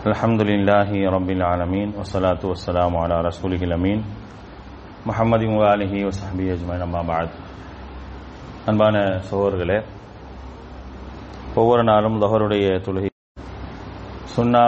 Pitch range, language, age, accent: 95-115 Hz, English, 30-49, Indian